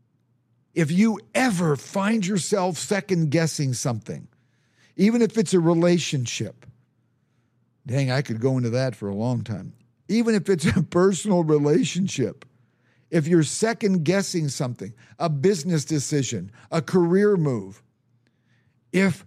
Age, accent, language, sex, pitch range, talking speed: 50-69, American, English, male, 125-170 Hz, 120 wpm